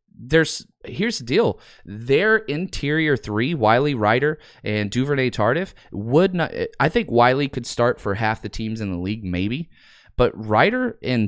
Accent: American